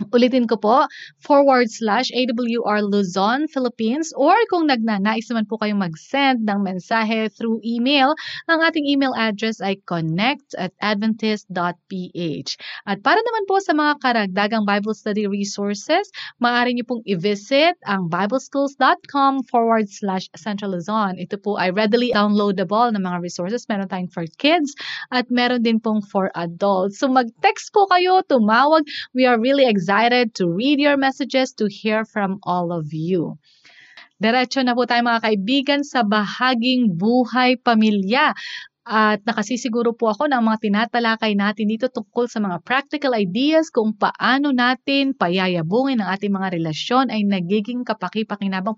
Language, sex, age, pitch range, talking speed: Filipino, female, 20-39, 200-260 Hz, 145 wpm